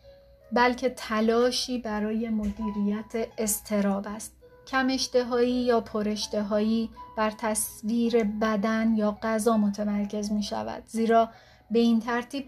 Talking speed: 110 wpm